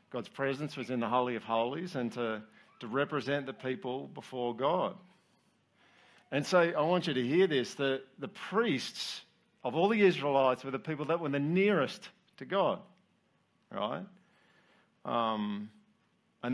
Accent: Australian